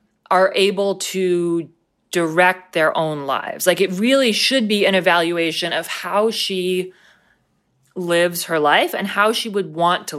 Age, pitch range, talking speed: 20-39, 150-205 Hz, 155 wpm